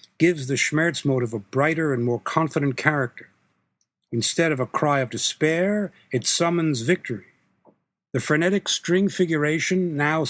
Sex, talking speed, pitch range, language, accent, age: male, 140 wpm, 125-160 Hz, English, American, 60-79